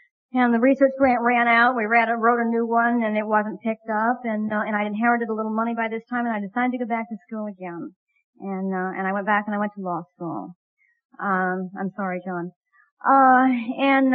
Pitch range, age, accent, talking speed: 205-250 Hz, 50-69, American, 240 wpm